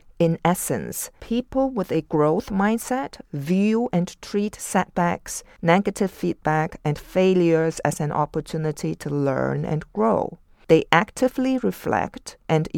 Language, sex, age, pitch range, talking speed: English, female, 50-69, 155-185 Hz, 120 wpm